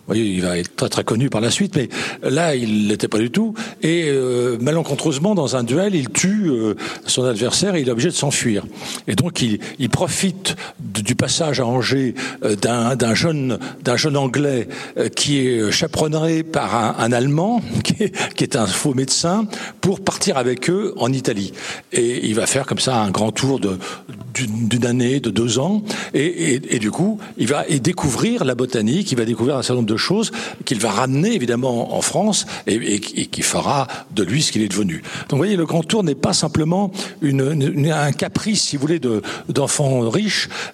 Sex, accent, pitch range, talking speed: male, French, 125-175 Hz, 210 wpm